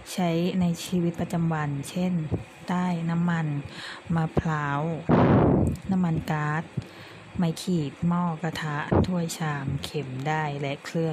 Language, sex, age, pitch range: Thai, female, 20-39, 145-175 Hz